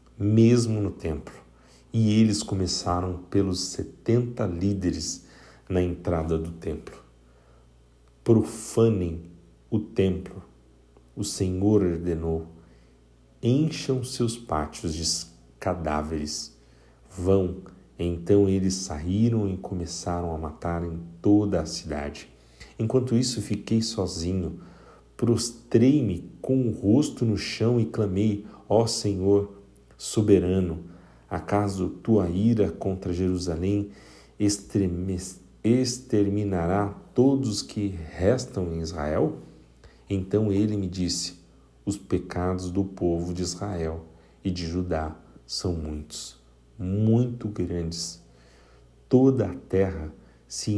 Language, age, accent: Portuguese, 50-69, Brazilian